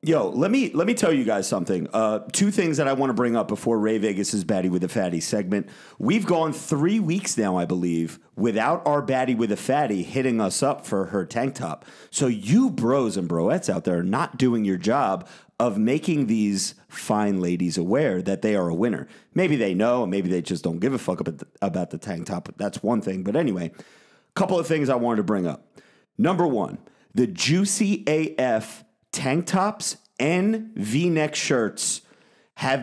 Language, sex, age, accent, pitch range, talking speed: English, male, 40-59, American, 100-160 Hz, 200 wpm